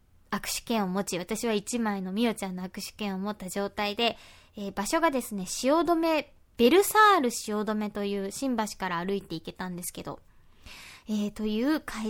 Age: 20-39